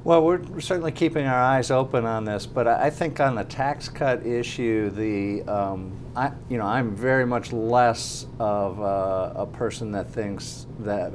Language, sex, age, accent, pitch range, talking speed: English, male, 50-69, American, 100-120 Hz, 180 wpm